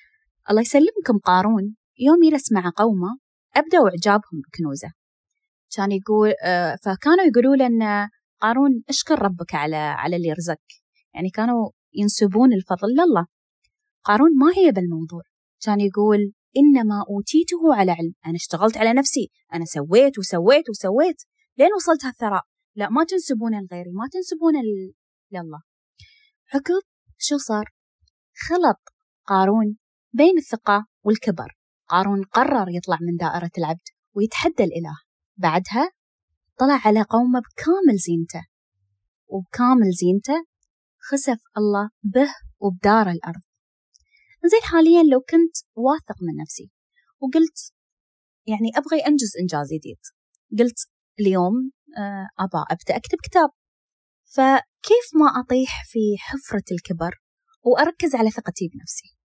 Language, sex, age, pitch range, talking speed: Arabic, female, 20-39, 185-295 Hz, 110 wpm